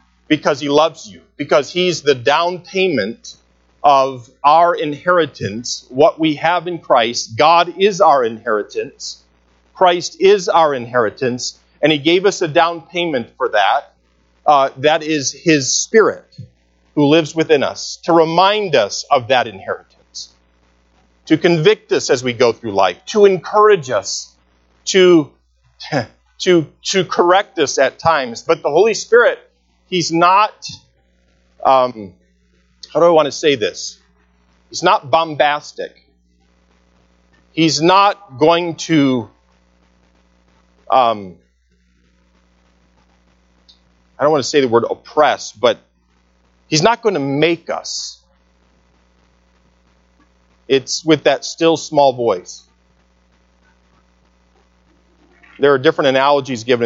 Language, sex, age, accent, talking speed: English, male, 40-59, American, 120 wpm